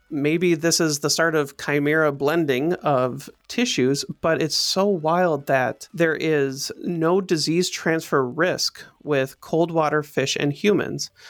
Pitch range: 140-165 Hz